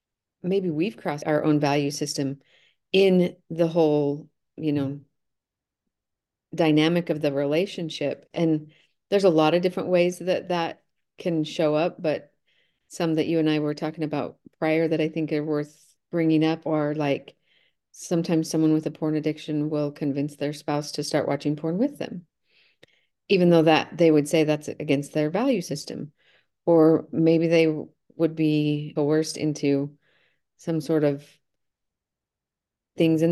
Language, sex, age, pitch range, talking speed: English, female, 40-59, 150-170 Hz, 155 wpm